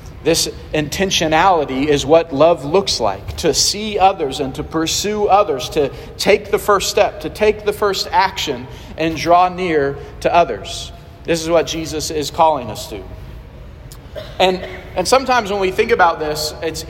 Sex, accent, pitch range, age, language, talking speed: male, American, 150-185 Hz, 40-59, English, 165 wpm